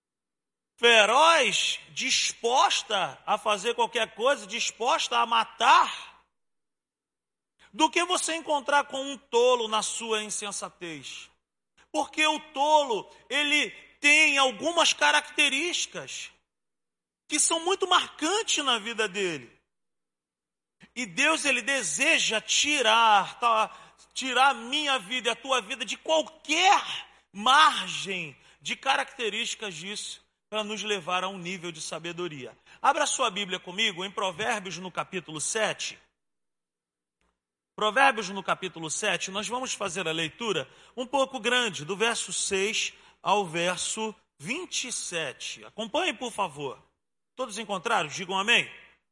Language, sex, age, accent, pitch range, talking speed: Portuguese, male, 40-59, Brazilian, 180-270 Hz, 115 wpm